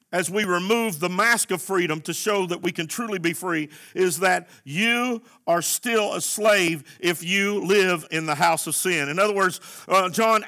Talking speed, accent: 200 wpm, American